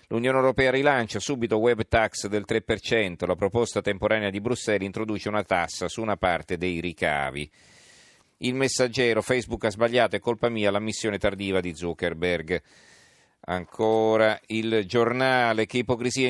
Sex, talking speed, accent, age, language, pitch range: male, 145 wpm, native, 40-59, Italian, 95-115 Hz